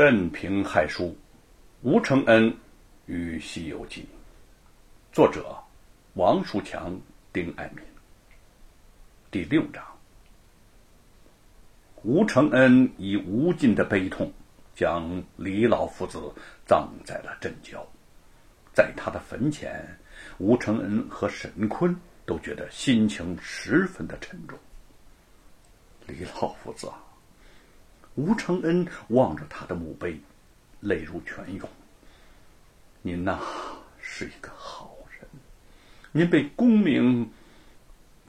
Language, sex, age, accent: Chinese, male, 60-79, native